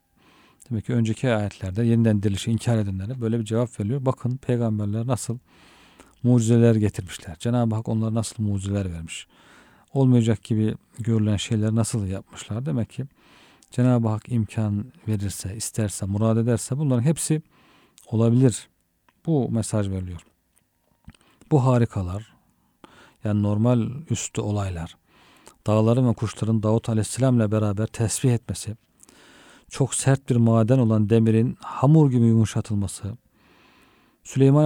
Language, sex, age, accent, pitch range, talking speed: Turkish, male, 50-69, native, 105-125 Hz, 120 wpm